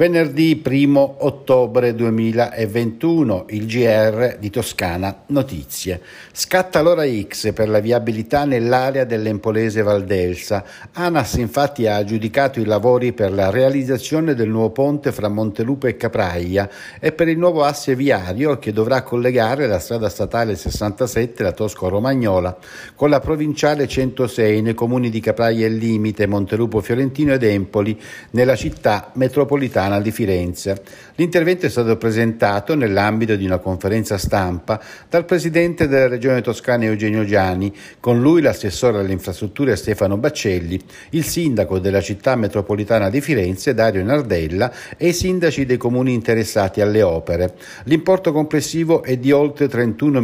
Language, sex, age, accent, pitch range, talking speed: Italian, male, 60-79, native, 105-140 Hz, 135 wpm